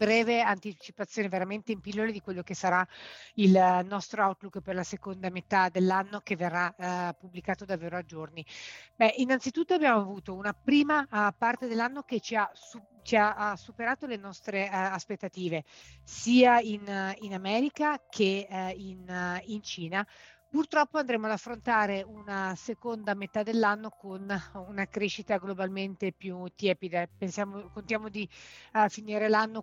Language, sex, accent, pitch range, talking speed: Italian, female, native, 190-220 Hz, 140 wpm